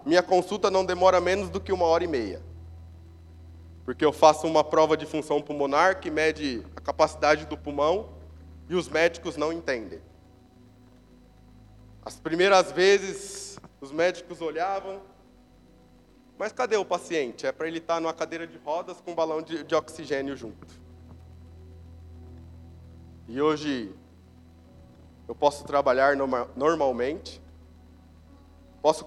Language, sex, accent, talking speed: Portuguese, male, Brazilian, 130 wpm